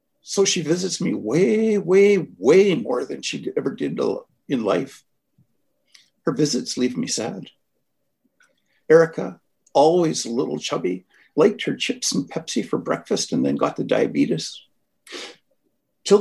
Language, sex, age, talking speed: English, male, 60-79, 135 wpm